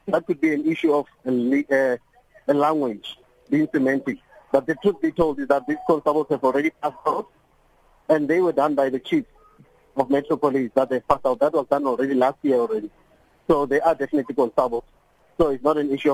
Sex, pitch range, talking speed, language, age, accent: male, 140-195 Hz, 195 wpm, English, 50-69, Indian